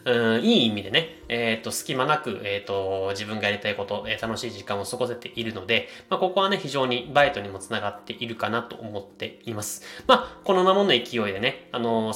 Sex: male